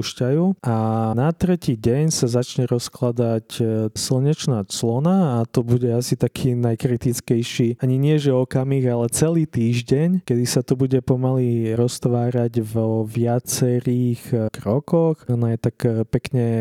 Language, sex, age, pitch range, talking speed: Slovak, male, 20-39, 115-130 Hz, 125 wpm